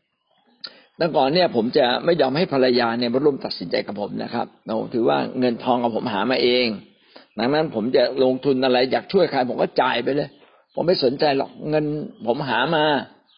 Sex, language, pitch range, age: male, Thai, 135-195 Hz, 60-79